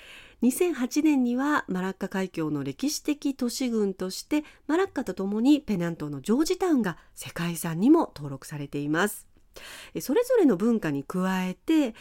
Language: Japanese